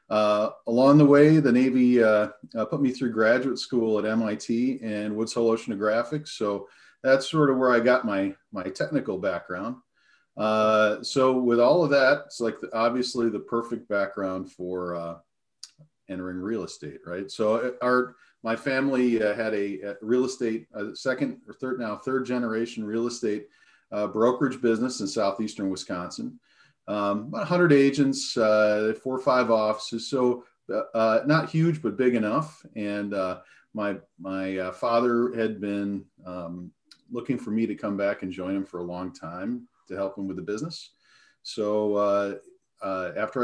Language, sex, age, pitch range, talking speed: English, male, 40-59, 100-125 Hz, 165 wpm